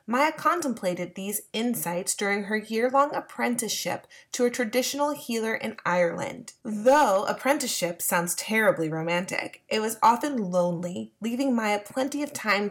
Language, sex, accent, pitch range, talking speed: English, female, American, 185-250 Hz, 130 wpm